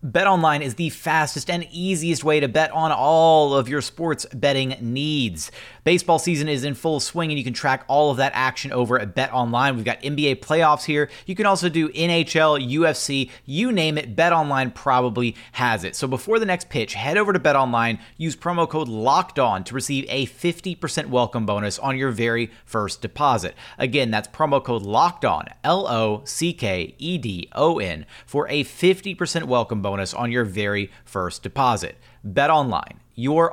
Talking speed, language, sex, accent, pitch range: 170 wpm, English, male, American, 120-155 Hz